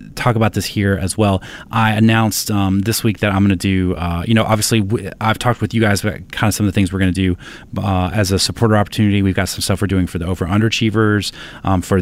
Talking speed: 265 wpm